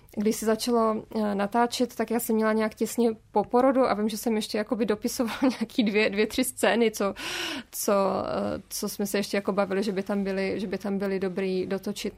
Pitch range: 205-240 Hz